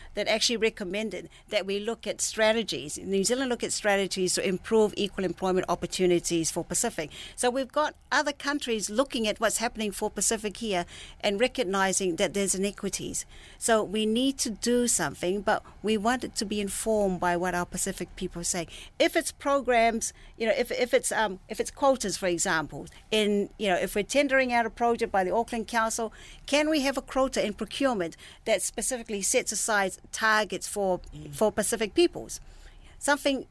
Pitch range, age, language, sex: 195-245 Hz, 50-69, English, female